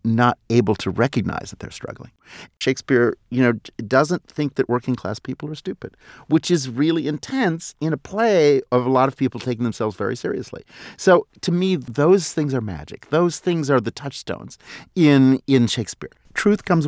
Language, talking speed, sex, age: English, 180 wpm, male, 50-69